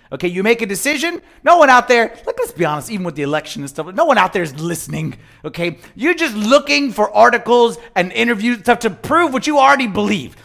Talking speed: 230 wpm